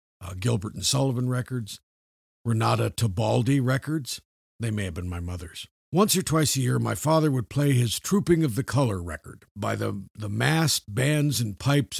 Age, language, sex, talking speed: 50-69, English, male, 180 wpm